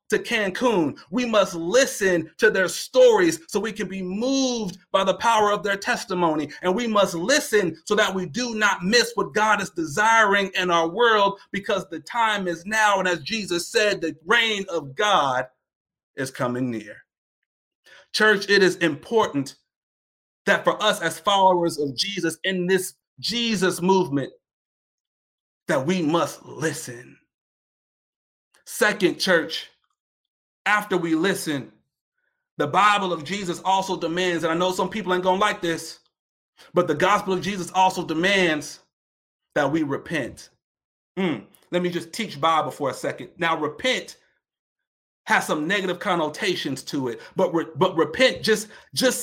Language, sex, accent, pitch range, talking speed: English, male, American, 170-210 Hz, 150 wpm